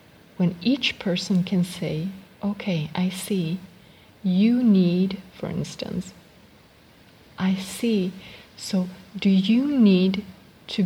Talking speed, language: 105 wpm, English